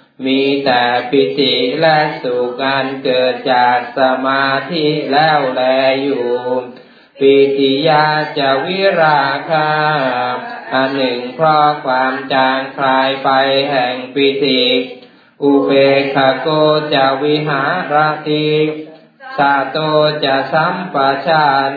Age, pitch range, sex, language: 20-39, 135-155 Hz, male, Thai